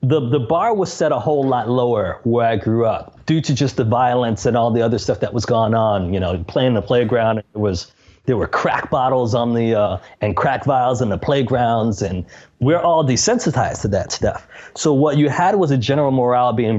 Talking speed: 225 wpm